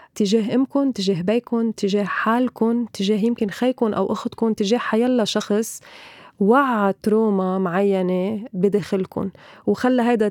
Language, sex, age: Arabic, female, 20-39